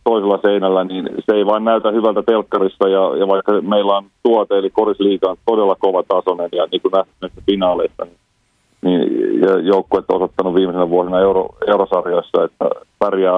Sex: male